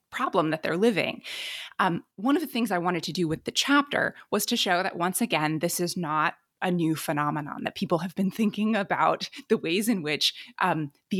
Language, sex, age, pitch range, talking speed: English, female, 20-39, 170-240 Hz, 215 wpm